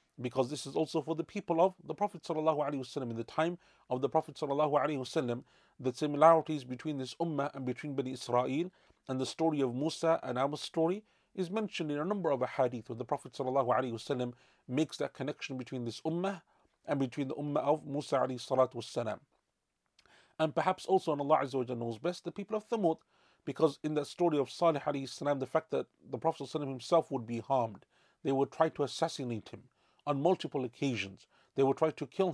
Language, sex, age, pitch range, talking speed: English, male, 40-59, 125-160 Hz, 185 wpm